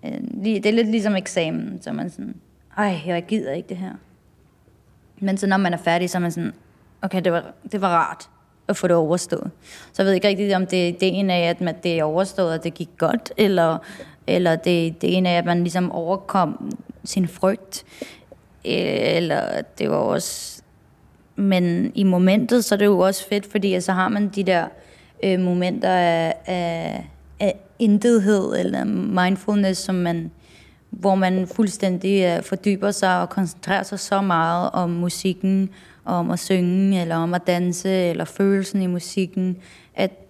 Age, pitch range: 20-39, 175-200 Hz